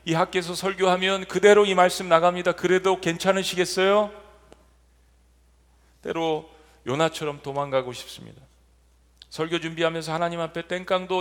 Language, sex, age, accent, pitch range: Korean, male, 40-59, native, 155-190 Hz